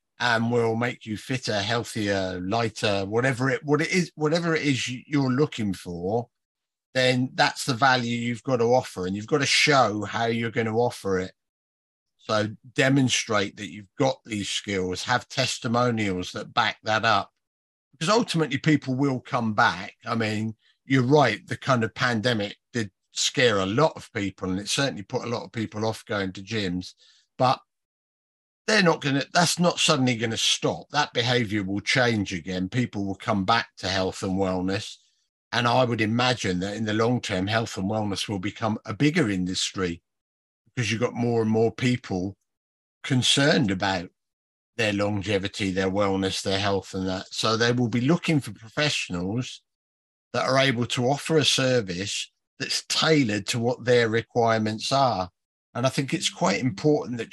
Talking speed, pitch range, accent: 175 wpm, 100-130 Hz, British